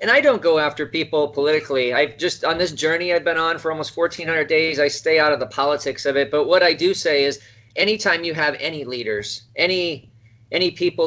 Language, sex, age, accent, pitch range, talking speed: English, male, 30-49, American, 130-195 Hz, 220 wpm